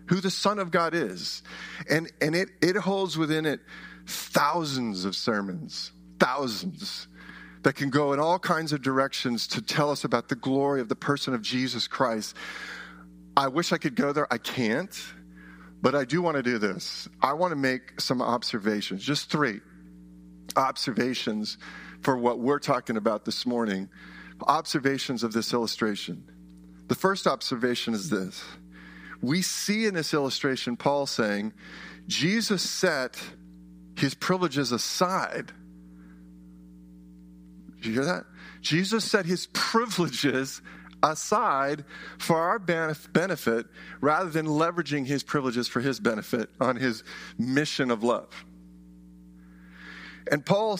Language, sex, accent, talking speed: English, male, American, 135 wpm